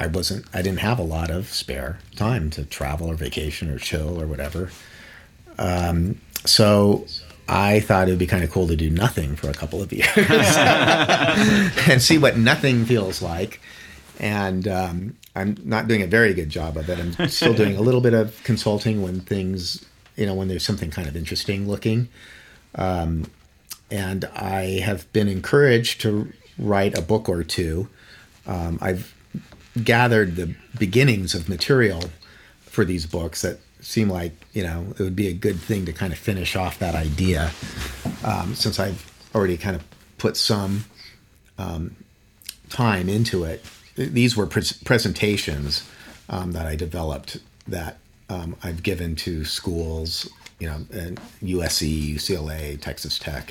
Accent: American